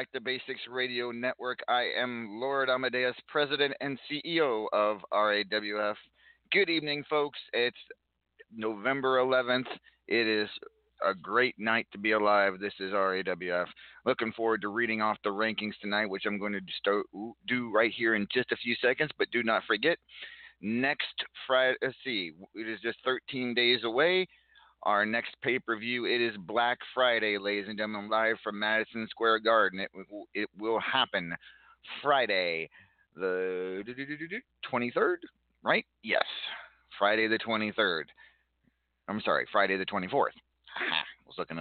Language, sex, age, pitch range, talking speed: English, male, 40-59, 100-125 Hz, 145 wpm